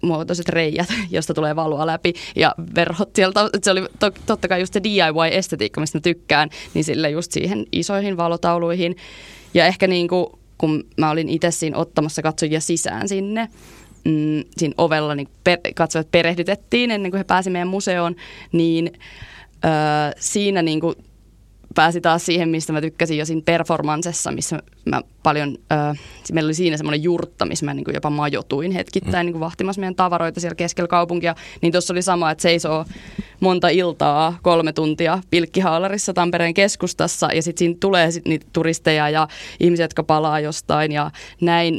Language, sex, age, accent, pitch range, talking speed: Finnish, female, 20-39, native, 155-185 Hz, 160 wpm